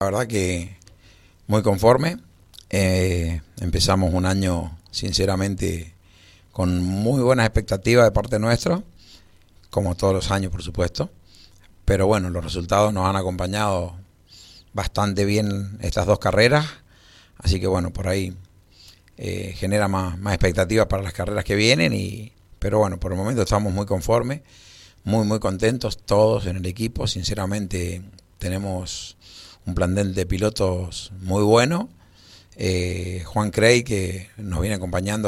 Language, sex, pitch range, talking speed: Spanish, male, 90-105 Hz, 140 wpm